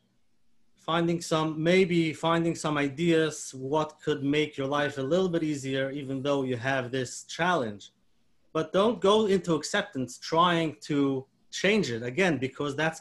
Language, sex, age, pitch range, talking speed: English, male, 30-49, 145-175 Hz, 150 wpm